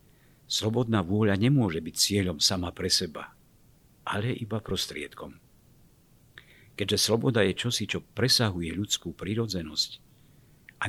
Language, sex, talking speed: Slovak, male, 110 wpm